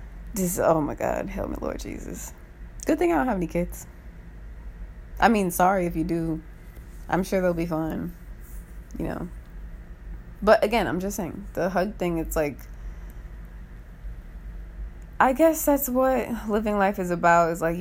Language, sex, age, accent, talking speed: English, female, 20-39, American, 160 wpm